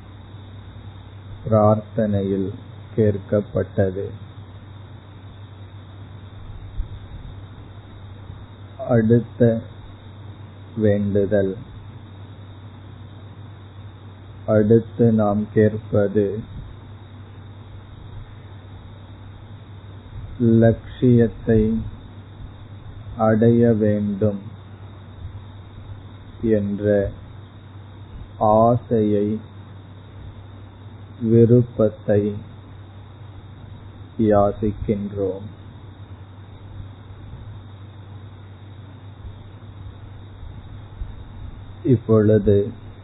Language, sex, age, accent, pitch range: Tamil, male, 50-69, native, 100-105 Hz